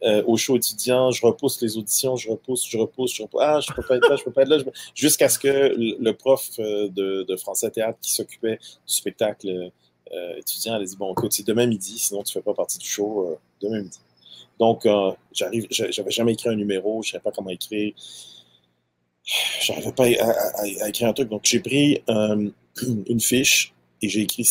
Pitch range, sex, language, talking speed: 100-120 Hz, male, French, 220 wpm